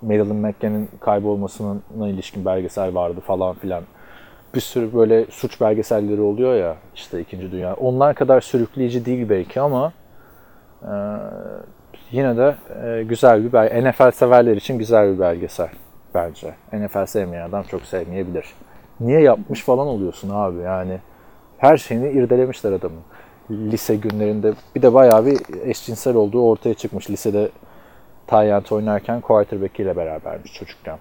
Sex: male